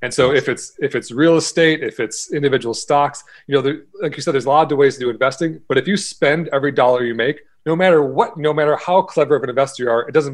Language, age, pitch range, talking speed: English, 30-49, 115-160 Hz, 280 wpm